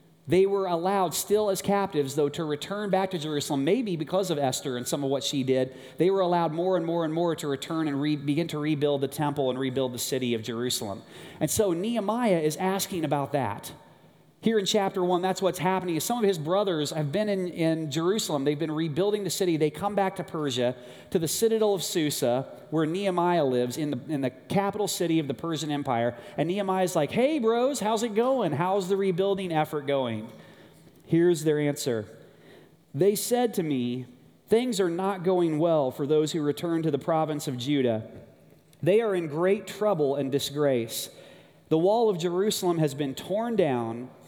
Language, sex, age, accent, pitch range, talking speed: English, male, 30-49, American, 140-190 Hz, 195 wpm